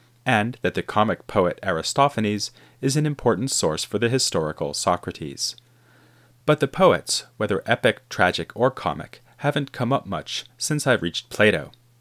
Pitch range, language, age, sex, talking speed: 90-125 Hz, English, 30-49, male, 150 wpm